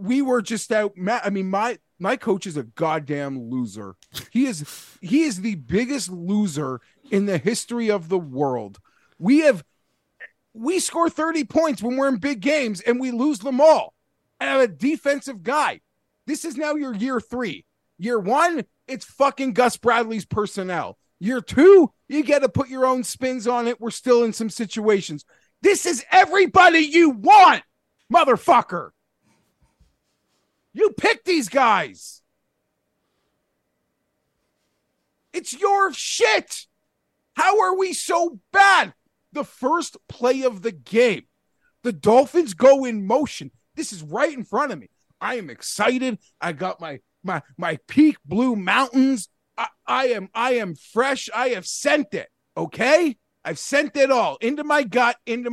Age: 30-49